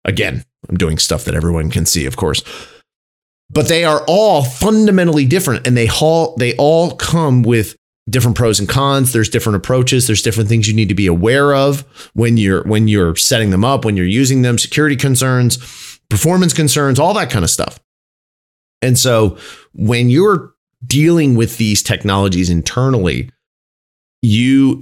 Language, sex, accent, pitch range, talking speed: English, male, American, 100-130 Hz, 165 wpm